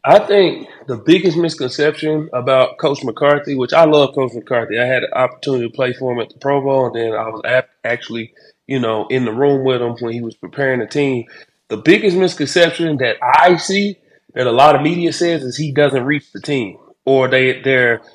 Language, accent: English, American